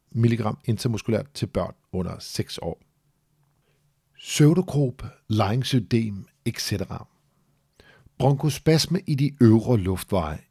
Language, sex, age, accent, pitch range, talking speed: Danish, male, 50-69, native, 100-140 Hz, 85 wpm